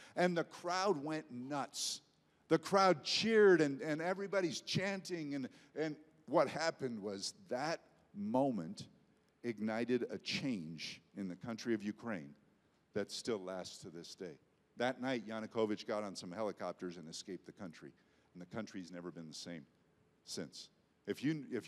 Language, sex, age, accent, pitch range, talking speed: English, male, 50-69, American, 110-175 Hz, 150 wpm